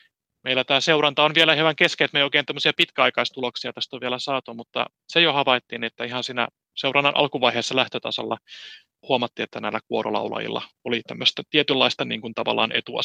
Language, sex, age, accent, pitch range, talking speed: Finnish, male, 30-49, native, 120-150 Hz, 165 wpm